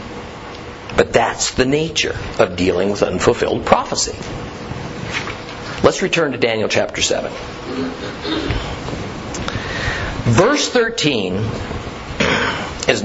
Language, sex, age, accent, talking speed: English, male, 50-69, American, 85 wpm